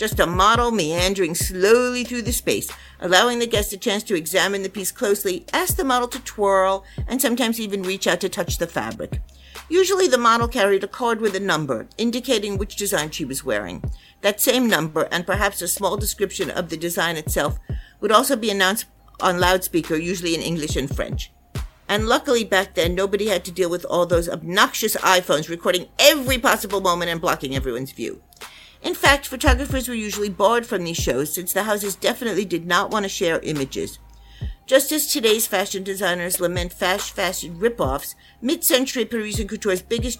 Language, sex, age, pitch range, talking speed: English, female, 50-69, 180-230 Hz, 180 wpm